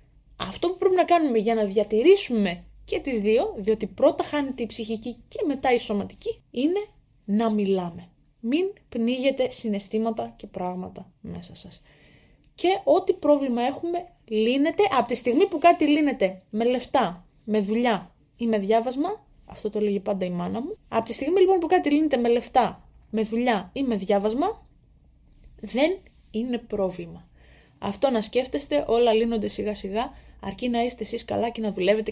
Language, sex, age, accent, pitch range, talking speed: Greek, female, 20-39, native, 210-275 Hz, 185 wpm